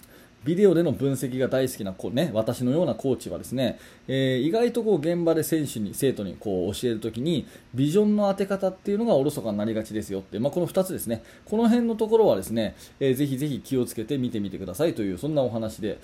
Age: 20-39